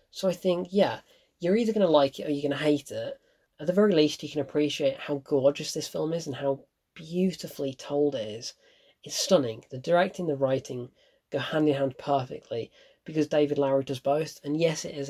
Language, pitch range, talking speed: English, 145-180 Hz, 215 wpm